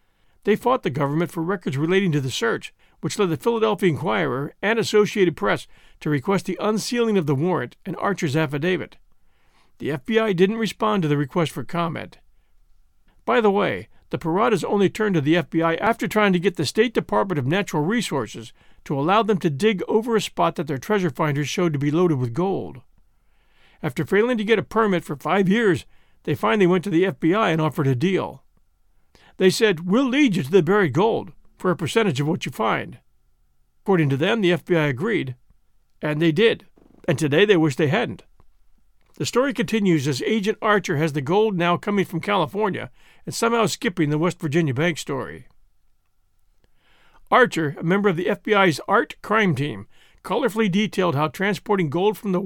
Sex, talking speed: male, 185 wpm